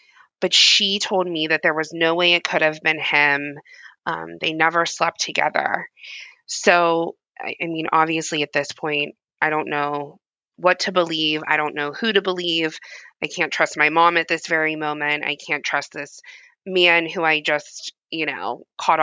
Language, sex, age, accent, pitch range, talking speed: English, female, 20-39, American, 145-170 Hz, 185 wpm